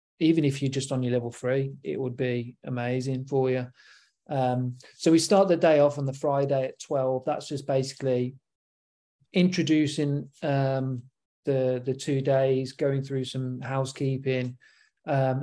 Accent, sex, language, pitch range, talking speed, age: British, male, English, 130-150 Hz, 155 wpm, 40-59